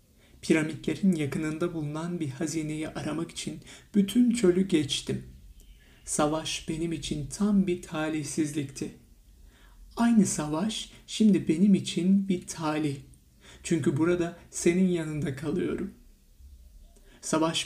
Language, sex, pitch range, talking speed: Turkish, male, 140-180 Hz, 100 wpm